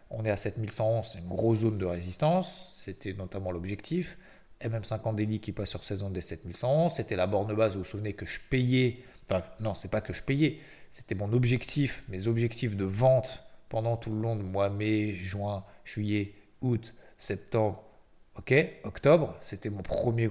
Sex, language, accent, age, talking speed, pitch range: male, French, French, 40-59, 185 wpm, 100-125 Hz